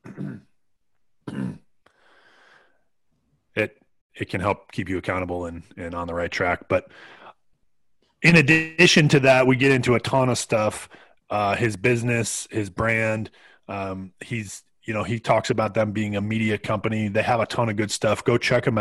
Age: 30-49